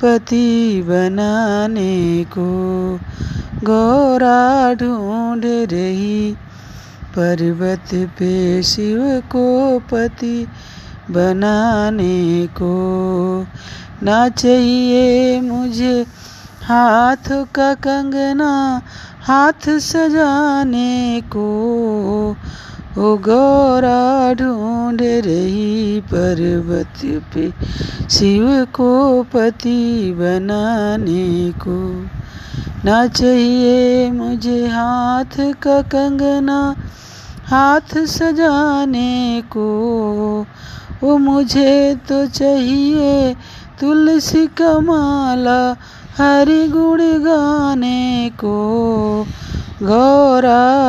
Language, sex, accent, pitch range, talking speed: Hindi, female, native, 185-255 Hz, 60 wpm